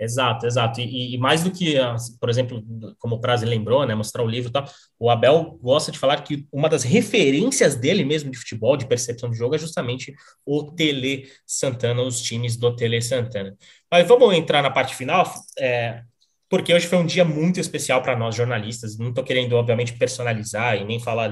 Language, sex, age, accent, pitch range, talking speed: Portuguese, male, 20-39, Brazilian, 115-140 Hz, 195 wpm